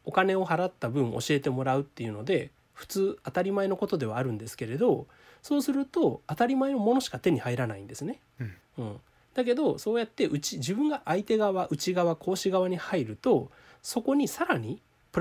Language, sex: Japanese, male